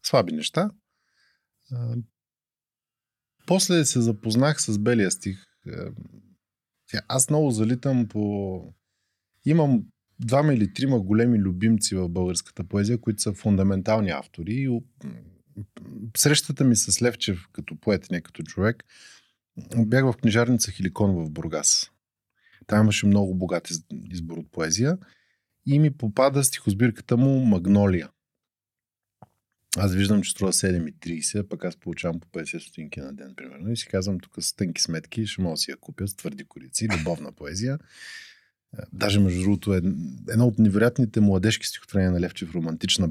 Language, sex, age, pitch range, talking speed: Bulgarian, male, 20-39, 90-120 Hz, 135 wpm